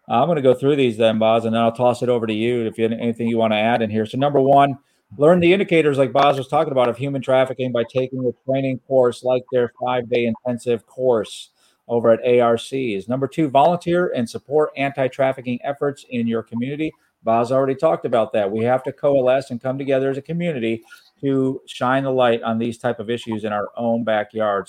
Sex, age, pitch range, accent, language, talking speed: male, 40-59, 120-145 Hz, American, English, 220 wpm